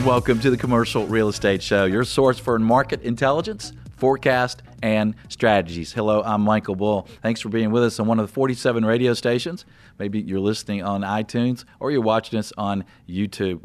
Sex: male